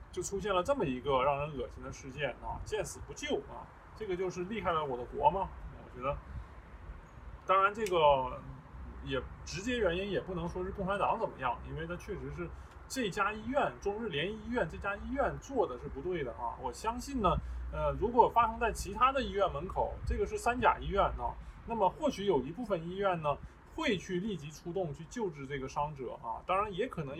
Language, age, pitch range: Chinese, 20-39, 150-220 Hz